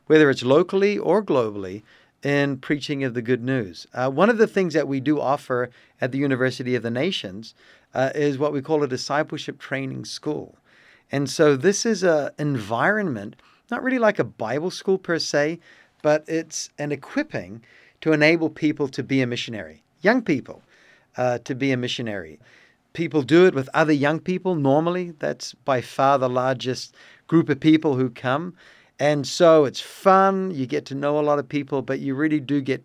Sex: male